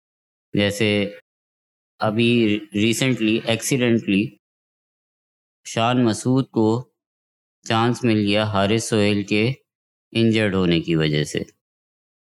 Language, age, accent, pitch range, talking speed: English, 20-39, Indian, 105-125 Hz, 85 wpm